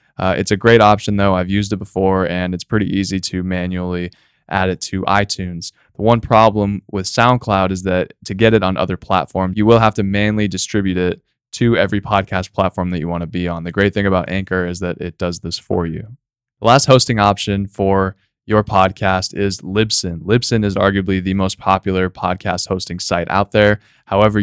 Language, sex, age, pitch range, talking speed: English, male, 20-39, 95-110 Hz, 205 wpm